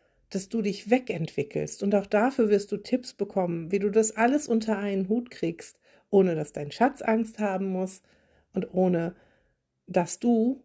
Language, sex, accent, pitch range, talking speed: German, female, German, 160-210 Hz, 170 wpm